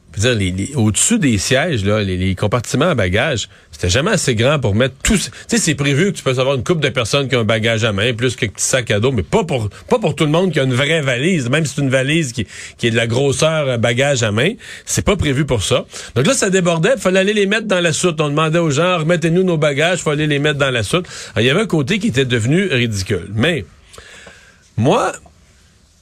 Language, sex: French, male